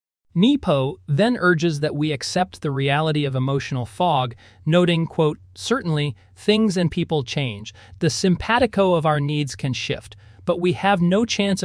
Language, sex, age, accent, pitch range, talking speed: English, male, 30-49, American, 125-175 Hz, 155 wpm